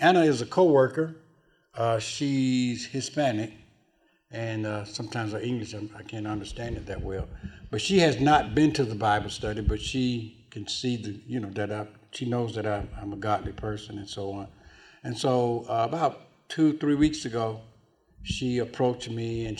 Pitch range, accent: 105-130 Hz, American